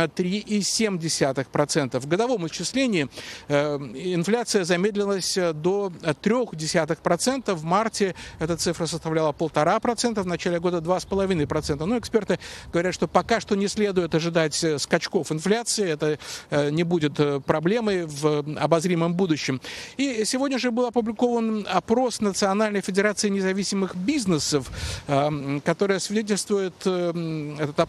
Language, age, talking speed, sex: Russian, 50-69, 110 wpm, male